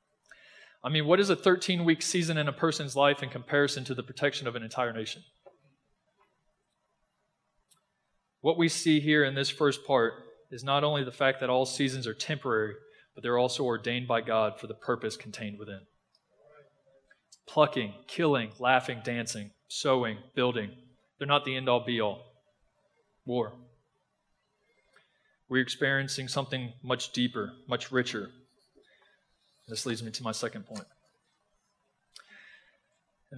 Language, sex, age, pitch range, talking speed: English, male, 20-39, 120-145 Hz, 135 wpm